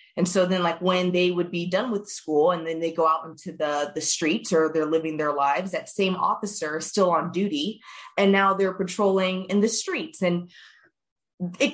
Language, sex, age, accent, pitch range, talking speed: English, female, 20-39, American, 160-190 Hz, 210 wpm